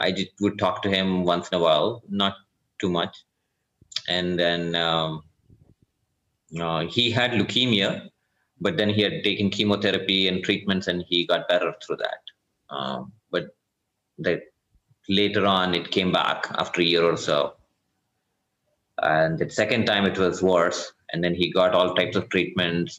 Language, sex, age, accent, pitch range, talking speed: English, male, 30-49, Indian, 85-100 Hz, 155 wpm